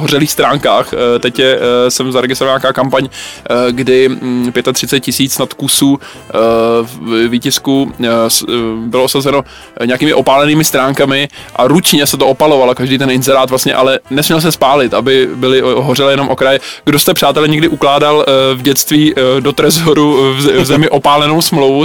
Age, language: 20-39, Czech